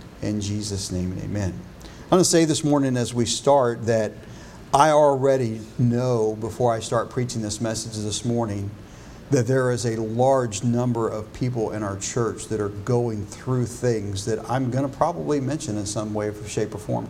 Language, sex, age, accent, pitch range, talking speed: English, male, 50-69, American, 110-130 Hz, 190 wpm